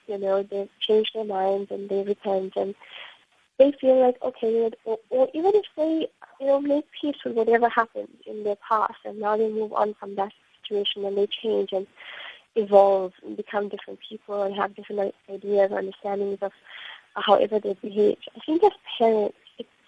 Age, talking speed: 20-39, 185 wpm